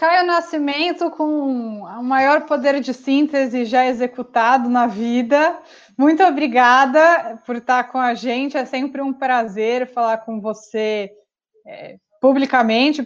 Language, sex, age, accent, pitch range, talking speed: Portuguese, female, 20-39, Brazilian, 225-275 Hz, 130 wpm